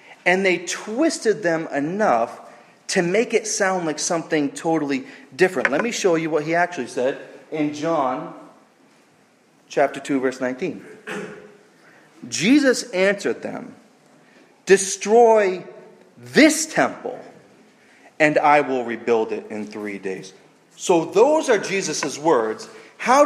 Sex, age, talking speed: male, 30-49, 120 wpm